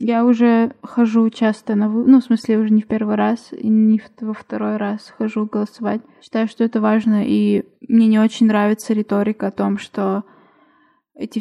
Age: 20-39